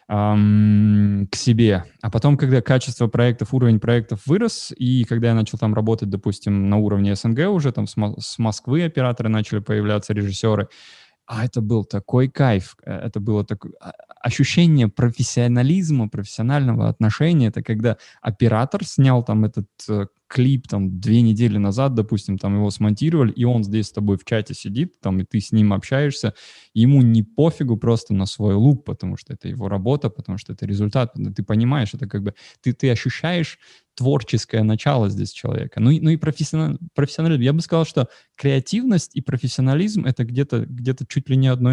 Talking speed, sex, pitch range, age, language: 170 wpm, male, 105-135 Hz, 20-39, Russian